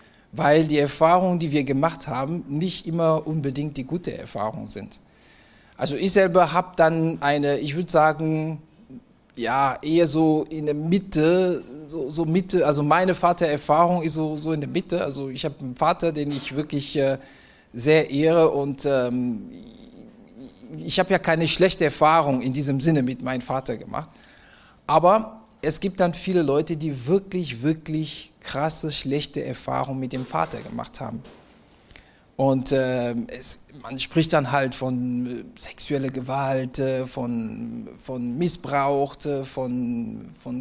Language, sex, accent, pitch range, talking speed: German, male, German, 135-170 Hz, 145 wpm